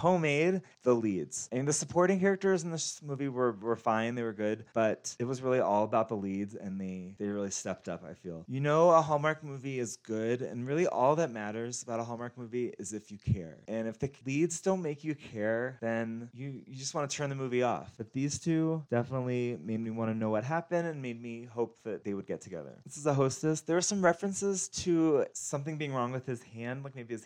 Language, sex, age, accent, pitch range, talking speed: English, male, 20-39, American, 115-155 Hz, 235 wpm